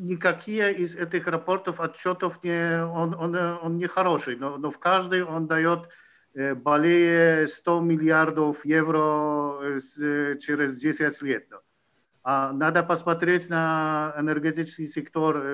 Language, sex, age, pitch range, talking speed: Ukrainian, male, 50-69, 150-175 Hz, 105 wpm